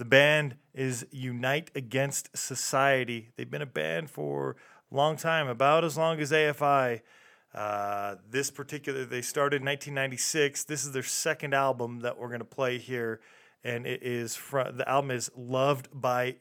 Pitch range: 125-145 Hz